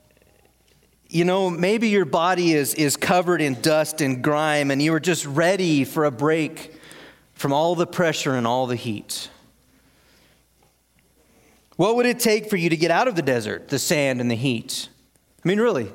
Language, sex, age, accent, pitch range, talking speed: English, male, 40-59, American, 140-185 Hz, 180 wpm